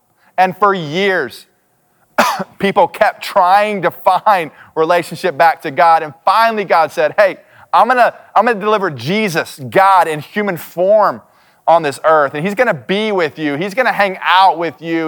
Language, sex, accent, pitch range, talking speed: English, male, American, 170-210 Hz, 175 wpm